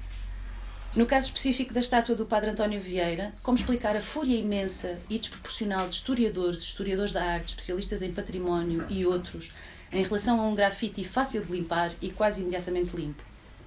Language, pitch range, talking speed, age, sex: Portuguese, 160-210 Hz, 165 wpm, 30-49, female